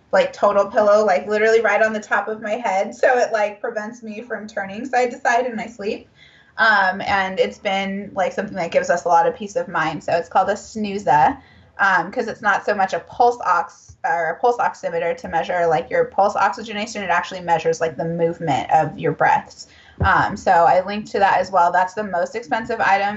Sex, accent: female, American